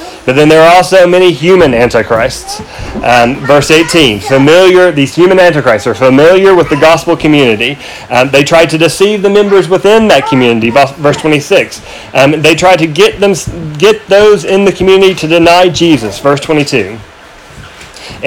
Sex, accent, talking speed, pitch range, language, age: male, American, 160 wpm, 135-185 Hz, English, 30-49